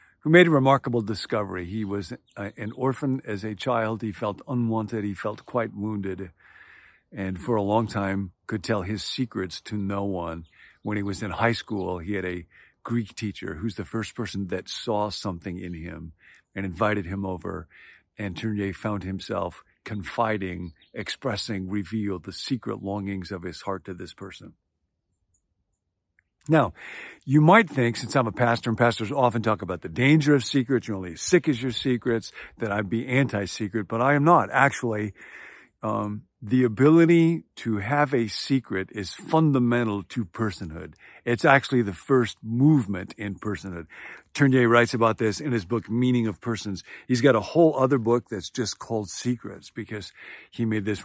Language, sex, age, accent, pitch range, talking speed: English, male, 50-69, American, 100-120 Hz, 170 wpm